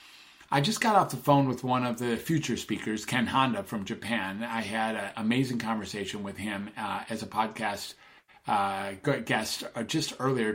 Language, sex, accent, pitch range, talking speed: English, male, American, 110-135 Hz, 175 wpm